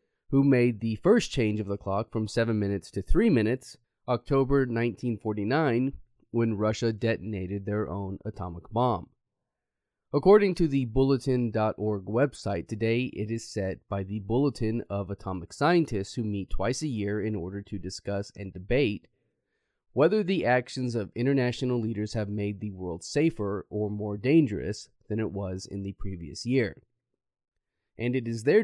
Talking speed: 155 wpm